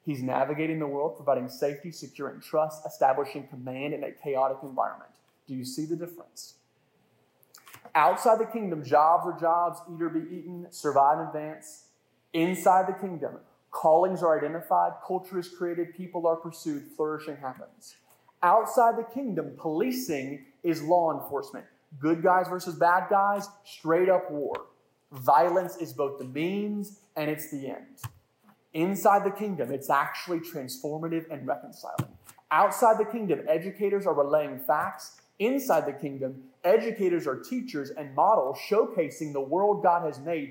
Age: 30-49